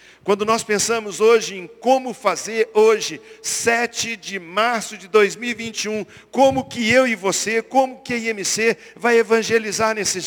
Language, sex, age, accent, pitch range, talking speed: Portuguese, male, 50-69, Brazilian, 205-260 Hz, 145 wpm